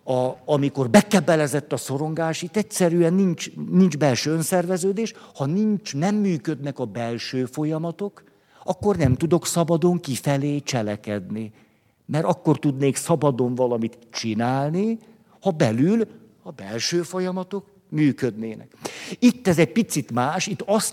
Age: 50-69